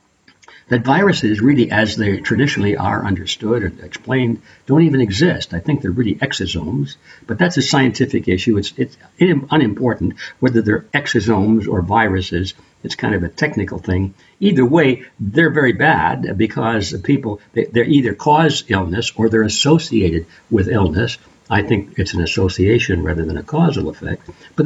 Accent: American